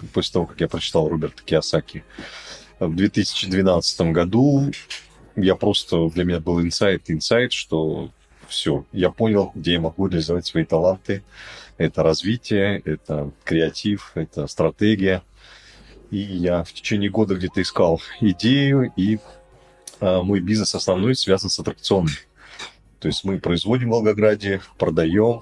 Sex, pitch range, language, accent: male, 85-105 Hz, Russian, native